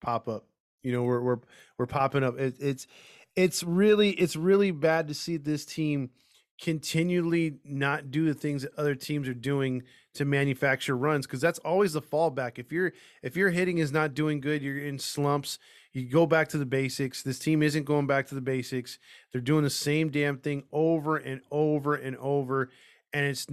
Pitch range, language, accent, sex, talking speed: 135-160 Hz, English, American, male, 195 wpm